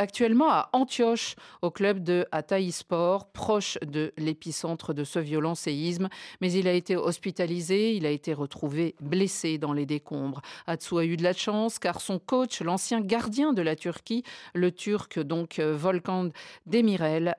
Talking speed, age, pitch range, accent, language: 160 wpm, 50-69, 160-205 Hz, French, French